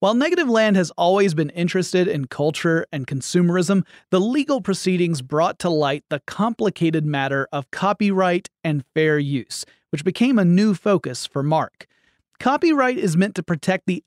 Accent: American